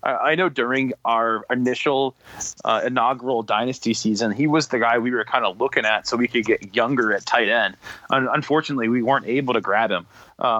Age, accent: 30-49, American